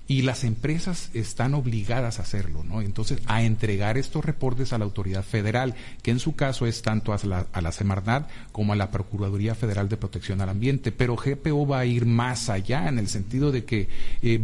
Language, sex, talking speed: Spanish, male, 205 wpm